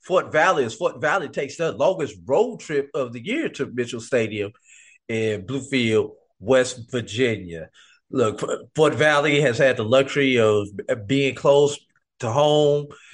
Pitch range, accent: 120-200 Hz, American